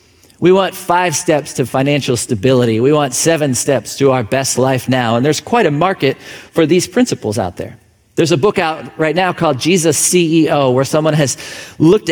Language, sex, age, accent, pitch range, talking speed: English, male, 40-59, American, 130-170 Hz, 195 wpm